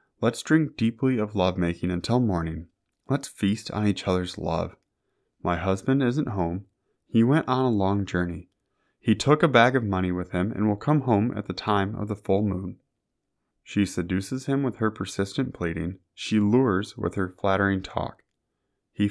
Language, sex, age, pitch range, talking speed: English, male, 20-39, 95-120 Hz, 175 wpm